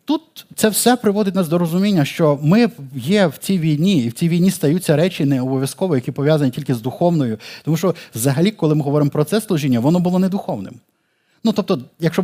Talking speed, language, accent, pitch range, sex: 200 wpm, Ukrainian, native, 150-190 Hz, male